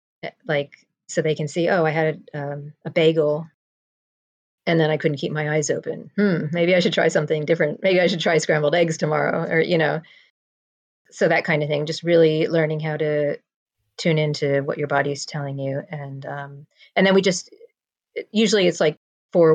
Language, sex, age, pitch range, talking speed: English, female, 40-59, 150-170 Hz, 195 wpm